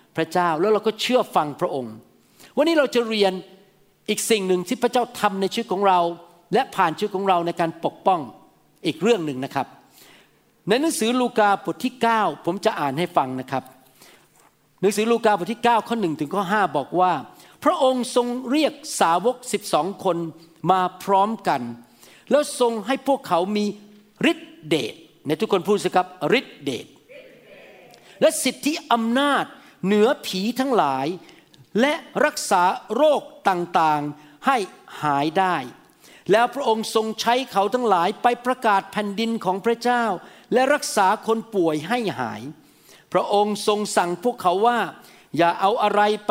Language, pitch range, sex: Thai, 185-235 Hz, male